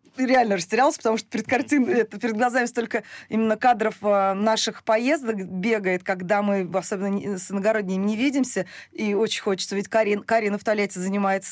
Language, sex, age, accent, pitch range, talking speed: Russian, female, 20-39, native, 185-225 Hz, 160 wpm